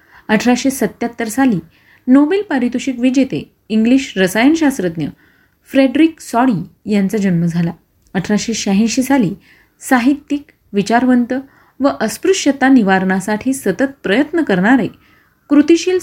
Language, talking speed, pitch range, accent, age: Marathi, 90 wpm, 195-270 Hz, native, 30-49